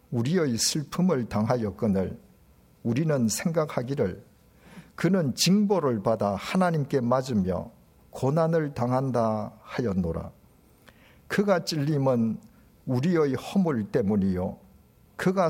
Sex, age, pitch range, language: male, 50-69, 110-160 Hz, Korean